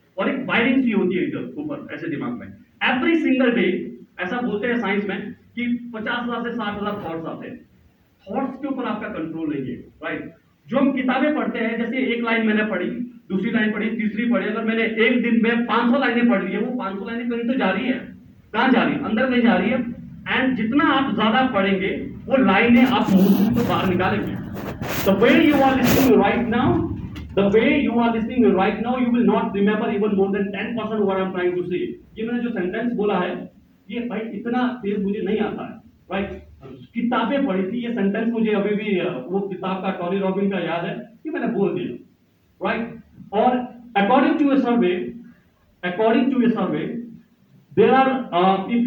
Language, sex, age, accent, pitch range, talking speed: Hindi, male, 40-59, native, 200-245 Hz, 110 wpm